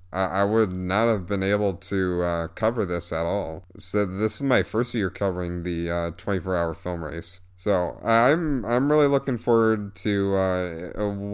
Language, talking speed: English, 175 wpm